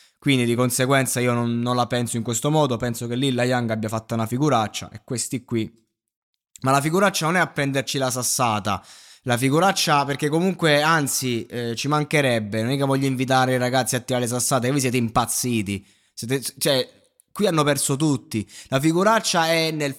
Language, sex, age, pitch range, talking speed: Italian, male, 20-39, 120-145 Hz, 190 wpm